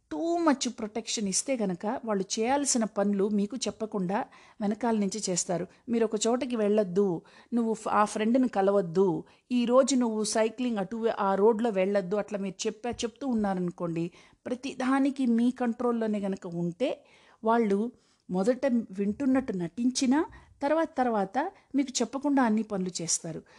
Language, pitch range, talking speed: Telugu, 205-265 Hz, 125 wpm